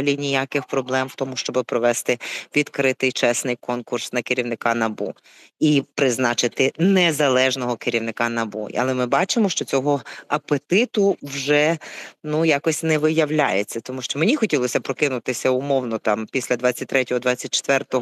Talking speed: 125 wpm